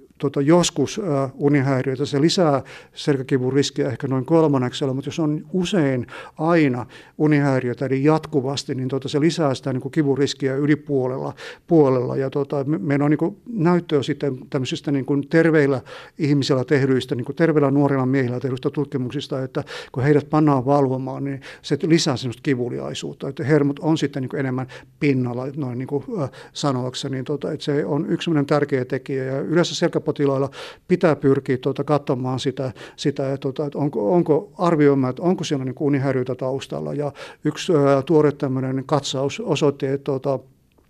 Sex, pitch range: male, 135-150 Hz